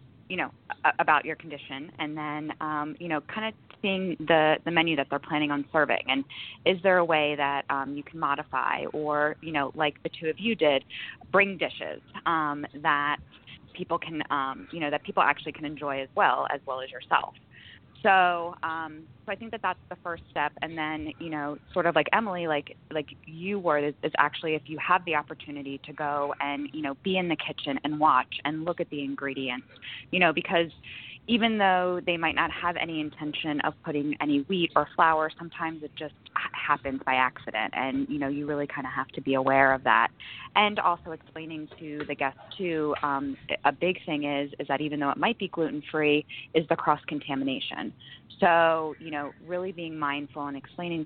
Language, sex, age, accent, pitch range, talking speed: English, female, 20-39, American, 140-165 Hz, 205 wpm